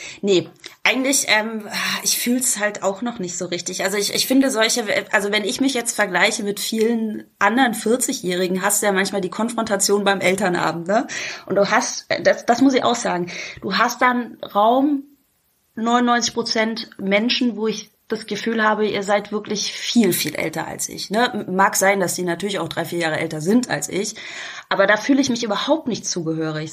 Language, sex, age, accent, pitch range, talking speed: German, female, 20-39, German, 190-235 Hz, 195 wpm